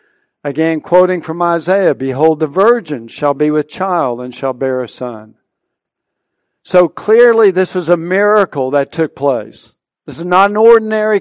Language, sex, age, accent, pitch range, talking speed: English, male, 60-79, American, 145-180 Hz, 160 wpm